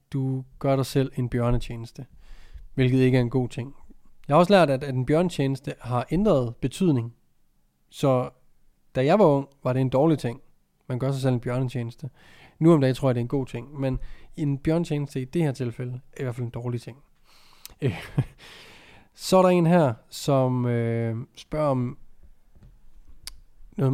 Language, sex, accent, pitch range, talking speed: Danish, male, native, 115-140 Hz, 180 wpm